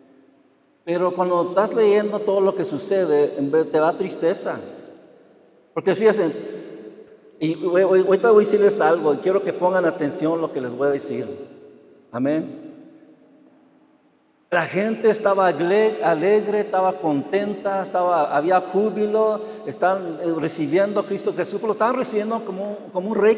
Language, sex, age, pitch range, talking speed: Spanish, male, 60-79, 175-235 Hz, 140 wpm